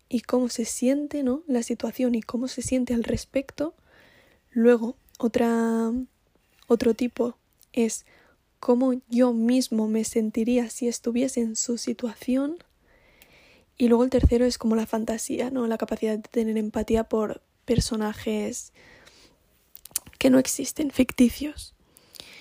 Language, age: Spanish, 10-29